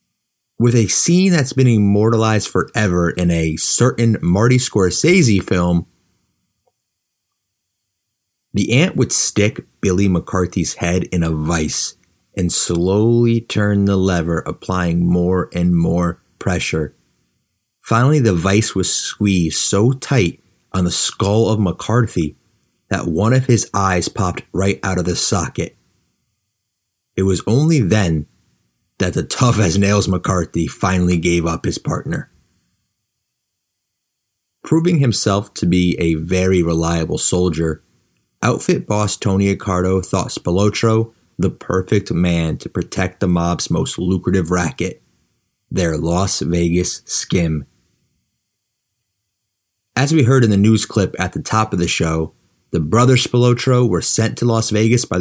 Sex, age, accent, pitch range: male, 30-49, American, 85-110 Hz